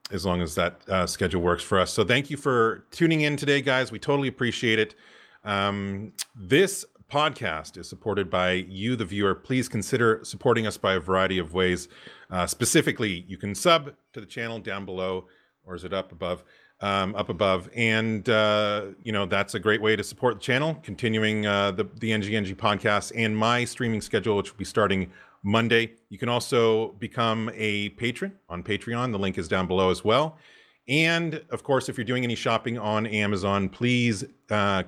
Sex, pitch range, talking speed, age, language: male, 95-115 Hz, 190 wpm, 40-59, English